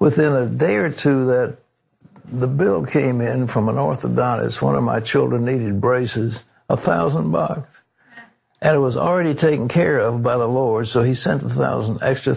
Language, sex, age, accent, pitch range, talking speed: English, male, 60-79, American, 115-135 Hz, 185 wpm